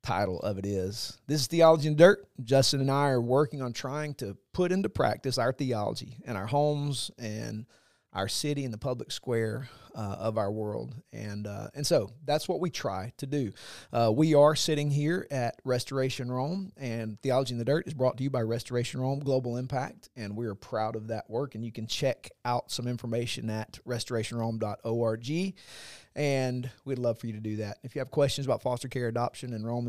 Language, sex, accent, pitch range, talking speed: English, male, American, 110-135 Hz, 205 wpm